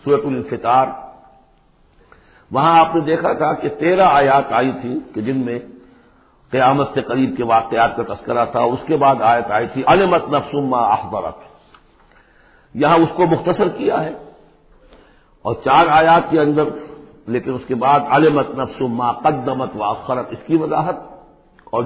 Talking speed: 160 wpm